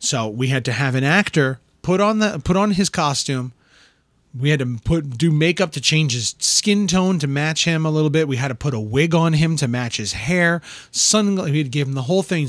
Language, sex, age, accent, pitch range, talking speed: English, male, 30-49, American, 130-165 Hz, 250 wpm